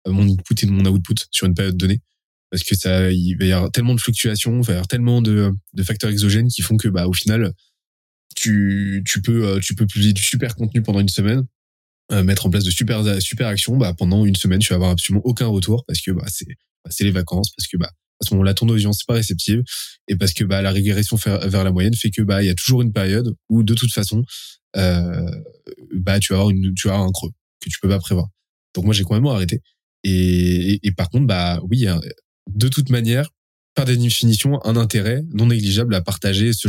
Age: 20-39